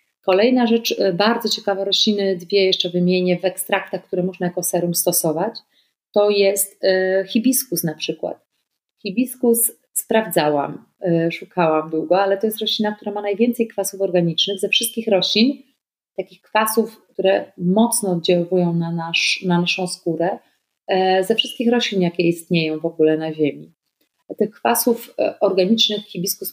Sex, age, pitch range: female, 30-49, 170-200 Hz